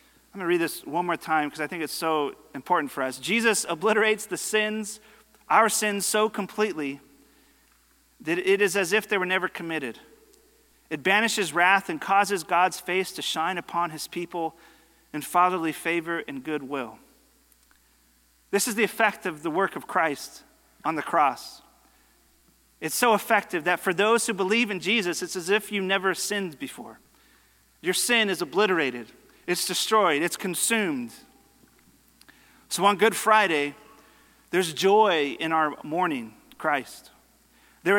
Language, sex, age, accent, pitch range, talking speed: English, male, 40-59, American, 170-210 Hz, 155 wpm